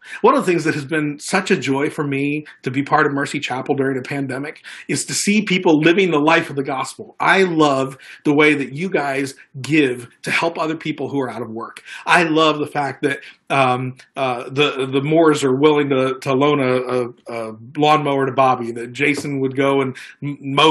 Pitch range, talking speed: 135-170 Hz, 215 wpm